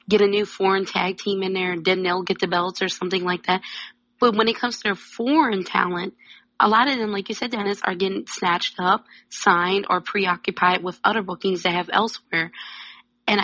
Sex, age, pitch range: female, 20-39, 185-225 Hz